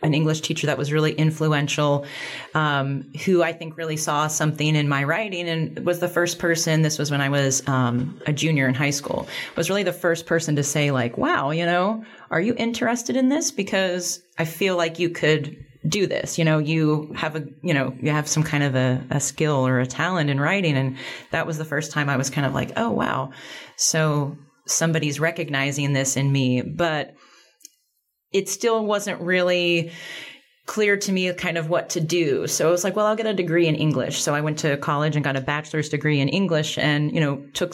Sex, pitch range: female, 140-170 Hz